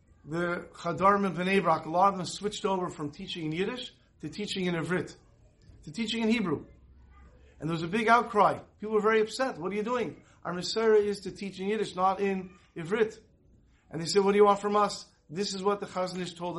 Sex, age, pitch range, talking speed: male, 50-69, 165-215 Hz, 220 wpm